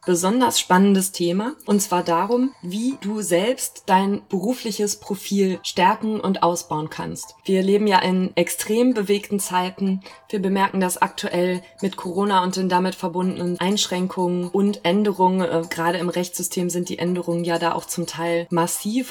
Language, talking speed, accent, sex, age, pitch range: German, 155 wpm, German, female, 20-39, 170-195 Hz